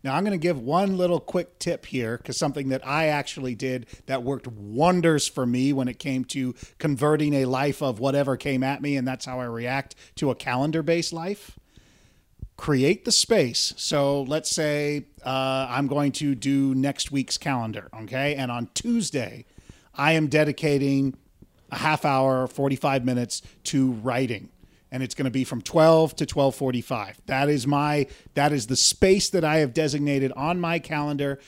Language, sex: English, male